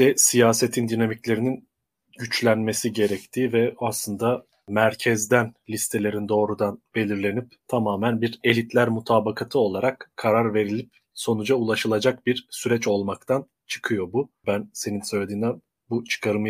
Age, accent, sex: 30-49, native, male